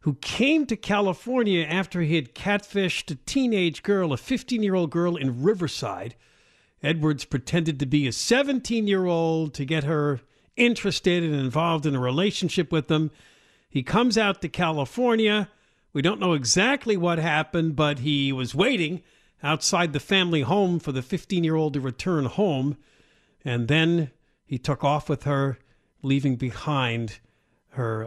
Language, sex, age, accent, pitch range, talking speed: English, male, 50-69, American, 130-185 Hz, 145 wpm